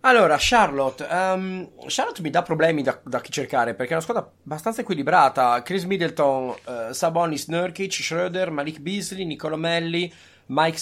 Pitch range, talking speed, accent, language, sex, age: 125-175 Hz, 145 wpm, native, Italian, male, 30-49